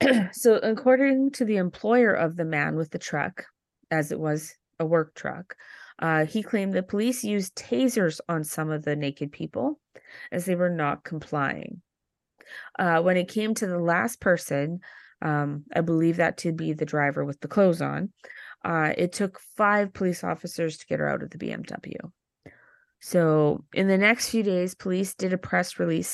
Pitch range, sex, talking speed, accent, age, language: 160-205 Hz, female, 180 wpm, American, 30-49, English